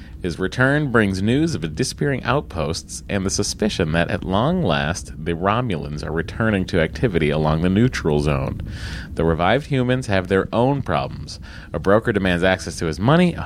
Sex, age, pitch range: male, 30-49, 80-115 Hz